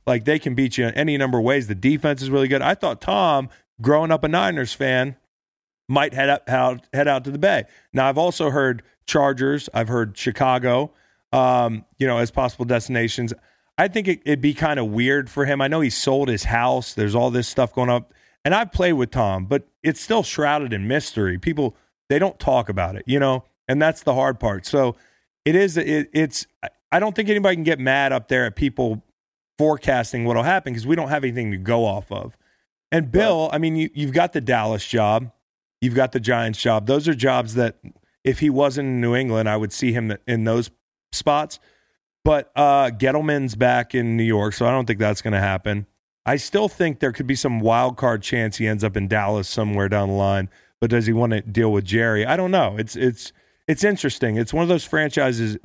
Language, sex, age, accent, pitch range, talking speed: English, male, 30-49, American, 115-145 Hz, 220 wpm